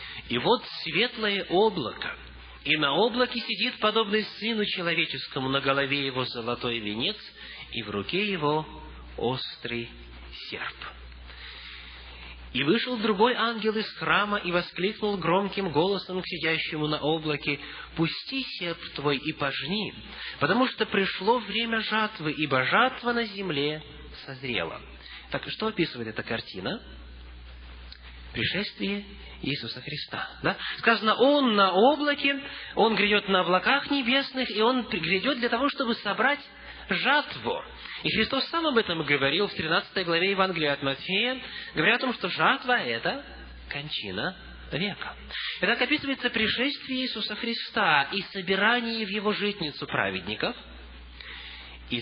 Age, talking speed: 20-39, 130 wpm